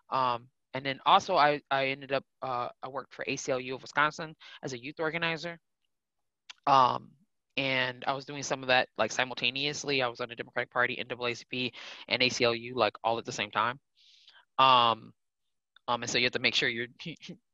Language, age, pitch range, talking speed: English, 20-39, 125-150 Hz, 185 wpm